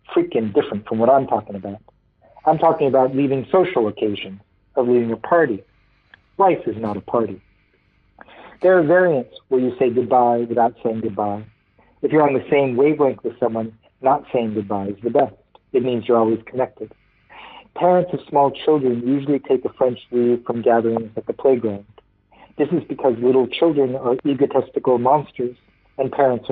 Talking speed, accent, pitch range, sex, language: 170 wpm, American, 115-145 Hz, male, English